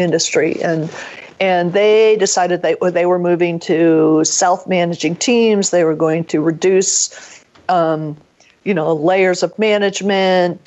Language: English